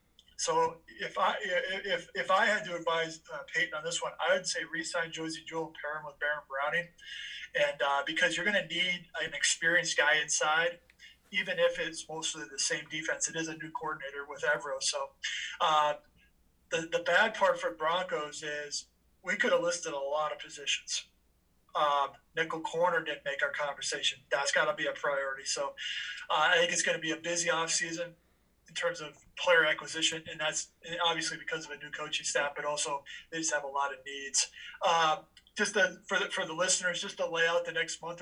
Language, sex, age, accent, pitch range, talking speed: English, male, 20-39, American, 150-180 Hz, 200 wpm